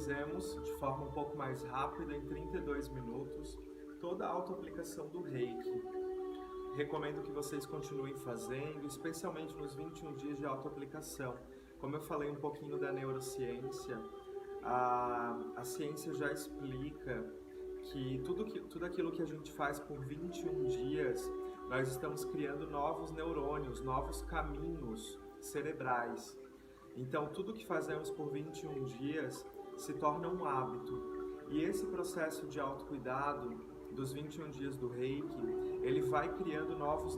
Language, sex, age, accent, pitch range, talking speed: Portuguese, male, 30-49, Brazilian, 125-180 Hz, 130 wpm